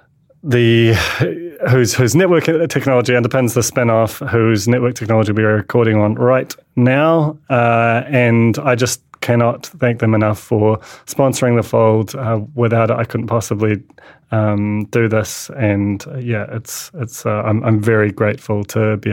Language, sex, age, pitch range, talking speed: English, male, 30-49, 110-130 Hz, 155 wpm